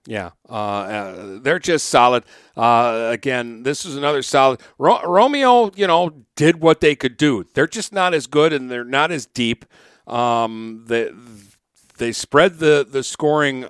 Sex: male